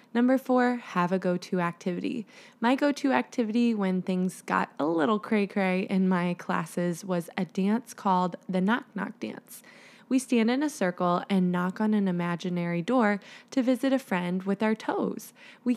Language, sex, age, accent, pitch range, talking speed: English, female, 20-39, American, 185-250 Hz, 170 wpm